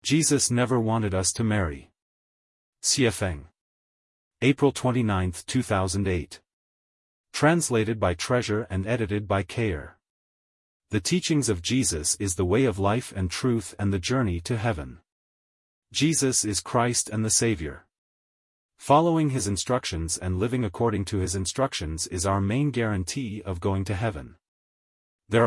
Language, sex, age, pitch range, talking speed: English, male, 40-59, 90-120 Hz, 135 wpm